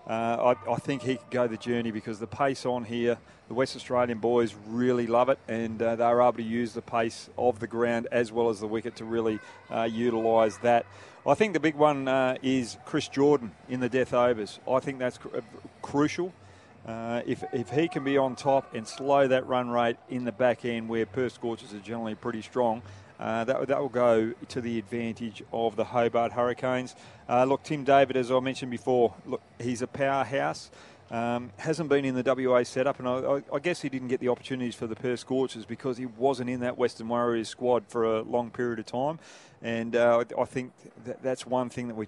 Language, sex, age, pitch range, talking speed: English, male, 30-49, 115-130 Hz, 215 wpm